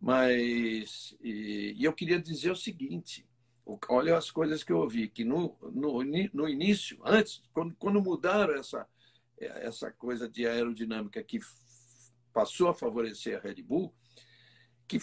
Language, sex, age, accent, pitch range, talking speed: Portuguese, male, 60-79, Brazilian, 120-195 Hz, 130 wpm